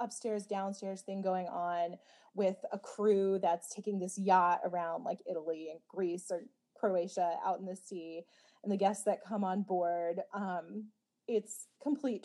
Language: English